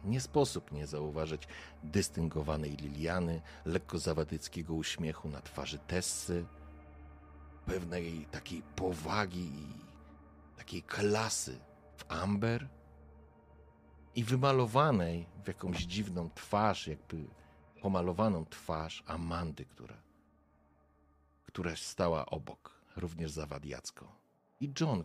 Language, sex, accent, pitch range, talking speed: Polish, male, native, 75-100 Hz, 90 wpm